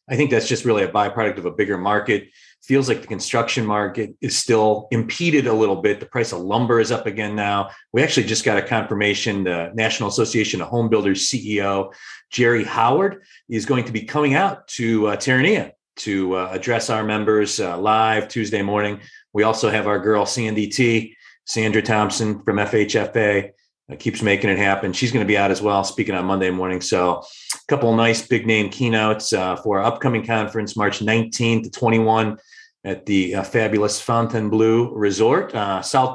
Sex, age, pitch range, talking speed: male, 40-59, 100-115 Hz, 190 wpm